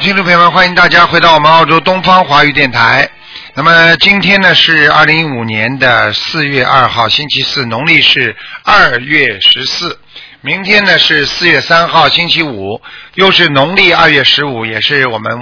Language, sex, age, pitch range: Chinese, male, 50-69, 140-175 Hz